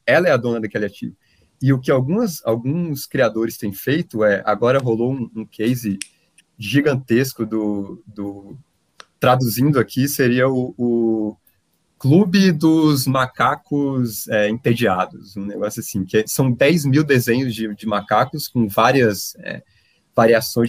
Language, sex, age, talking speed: Portuguese, male, 20-39, 140 wpm